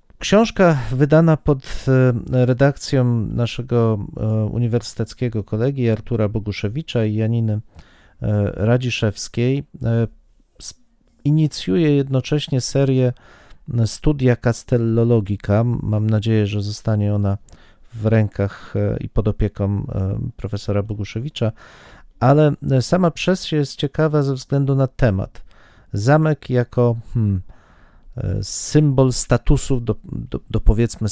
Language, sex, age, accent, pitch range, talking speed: Polish, male, 40-59, native, 110-135 Hz, 85 wpm